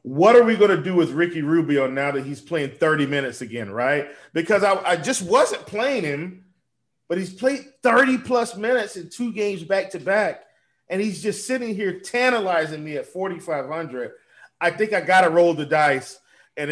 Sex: male